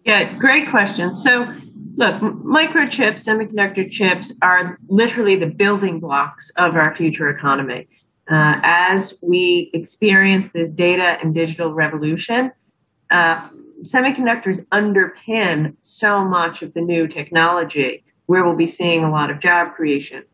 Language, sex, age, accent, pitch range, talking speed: English, female, 30-49, American, 165-195 Hz, 130 wpm